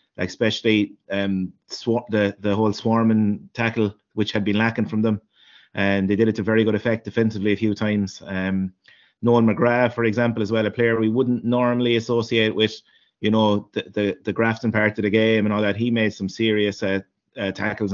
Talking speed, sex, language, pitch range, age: 205 wpm, male, English, 105-115 Hz, 30-49